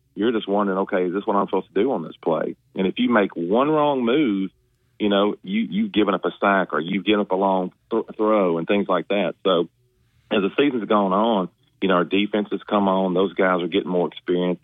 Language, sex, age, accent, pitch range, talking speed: English, male, 40-59, American, 95-115 Hz, 250 wpm